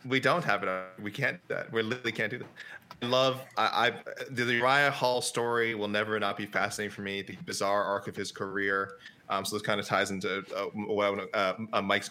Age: 20-39